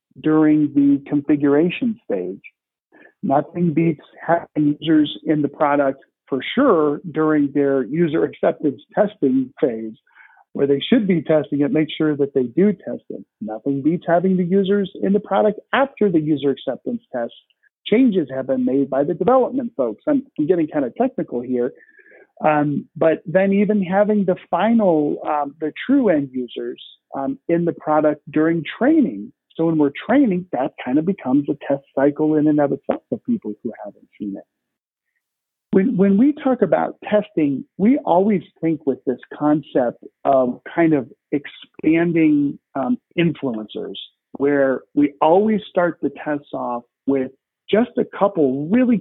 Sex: male